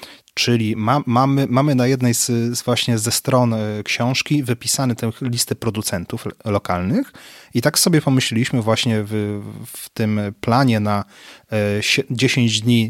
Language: Polish